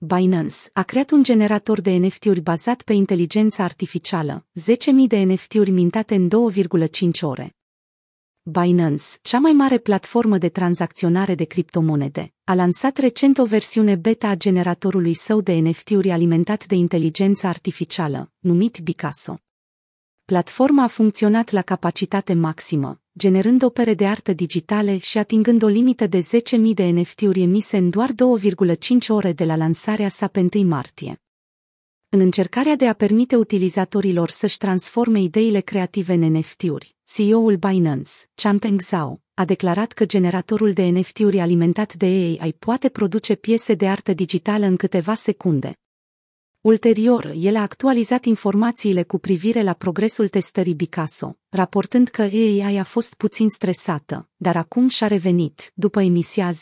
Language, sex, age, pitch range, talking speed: Romanian, female, 30-49, 175-220 Hz, 140 wpm